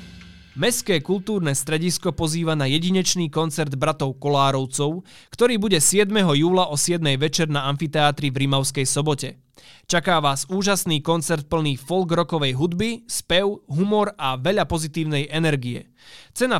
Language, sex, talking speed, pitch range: Slovak, male, 130 wpm, 140-180 Hz